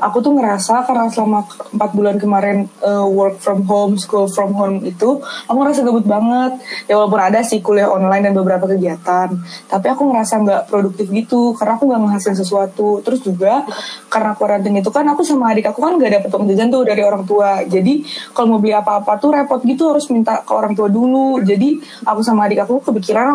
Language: Indonesian